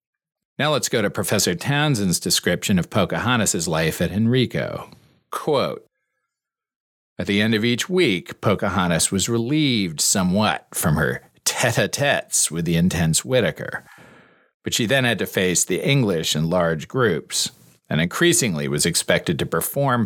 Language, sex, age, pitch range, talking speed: English, male, 40-59, 80-105 Hz, 140 wpm